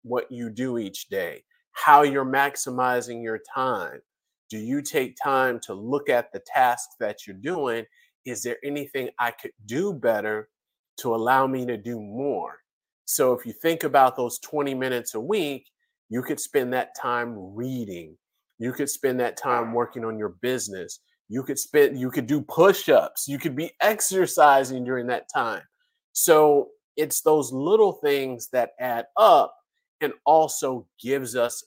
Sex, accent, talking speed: male, American, 165 wpm